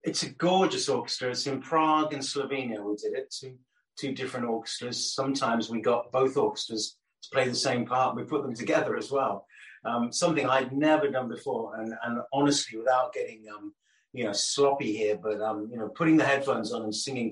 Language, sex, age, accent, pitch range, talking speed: English, male, 30-49, British, 110-145 Hz, 200 wpm